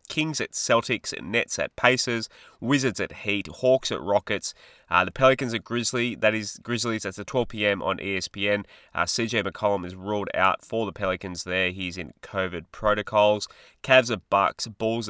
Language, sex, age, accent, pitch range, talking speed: English, male, 20-39, Australian, 95-115 Hz, 175 wpm